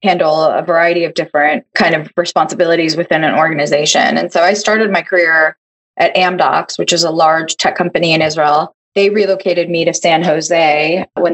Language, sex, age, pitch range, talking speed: English, female, 20-39, 165-195 Hz, 180 wpm